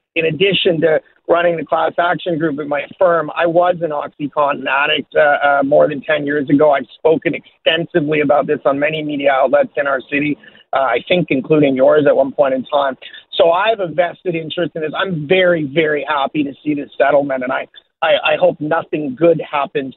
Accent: American